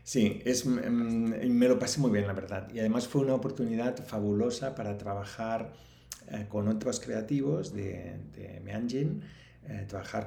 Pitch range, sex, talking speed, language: 100-120 Hz, male, 160 wpm, Spanish